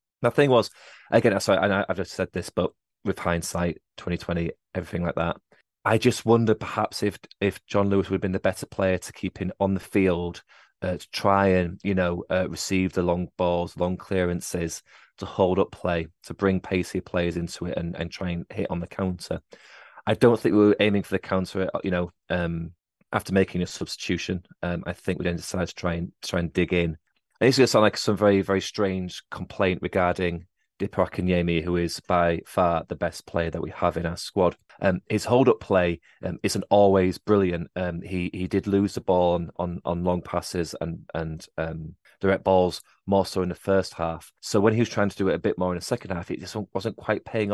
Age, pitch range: 30-49, 85-100 Hz